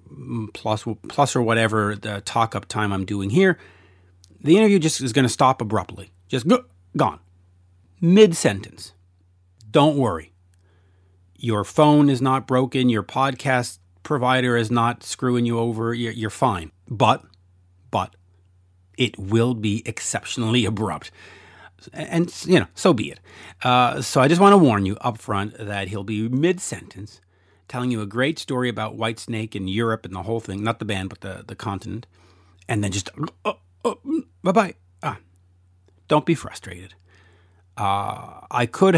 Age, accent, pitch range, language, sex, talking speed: 40-59, American, 95-125 Hz, English, male, 150 wpm